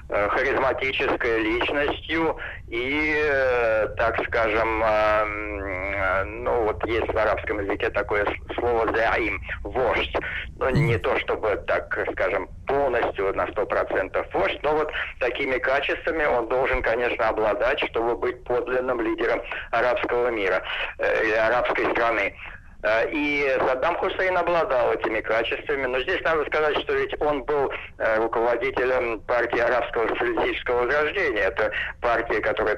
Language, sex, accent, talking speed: Russian, male, native, 120 wpm